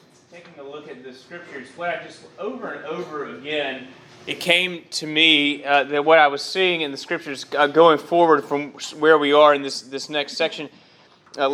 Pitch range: 140-165 Hz